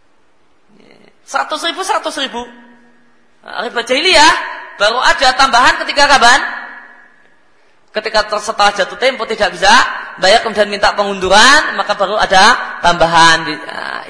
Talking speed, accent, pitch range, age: 110 wpm, native, 170-225 Hz, 20-39